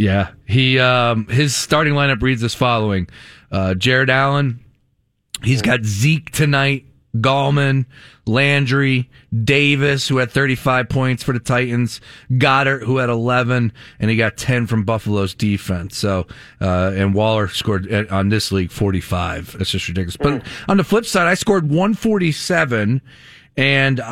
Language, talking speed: English, 145 wpm